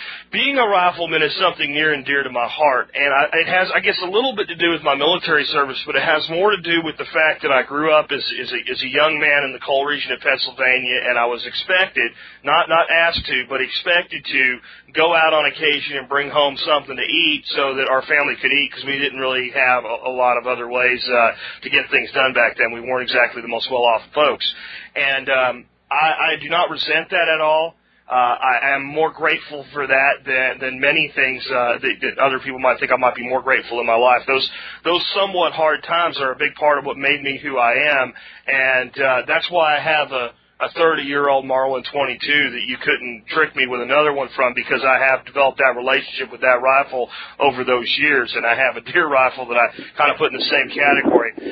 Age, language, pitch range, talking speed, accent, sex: 40-59, English, 130-155 Hz, 235 wpm, American, male